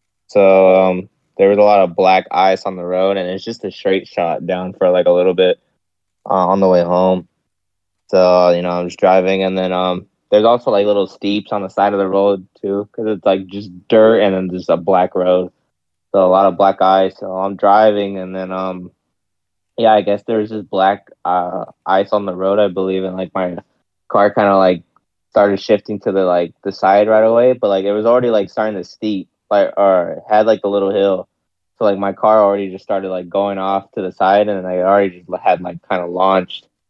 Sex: male